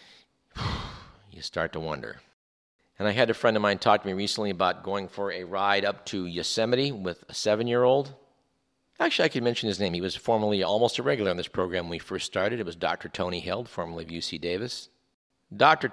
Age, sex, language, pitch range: 50-69, male, English, 95-120 Hz